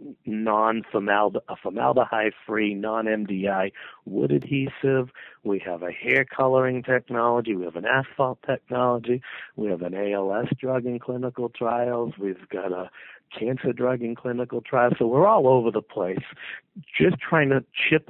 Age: 50-69